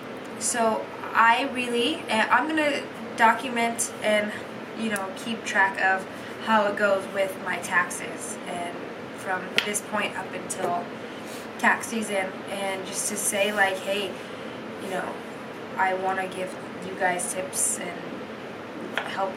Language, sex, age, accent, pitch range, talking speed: English, female, 20-39, American, 195-235 Hz, 135 wpm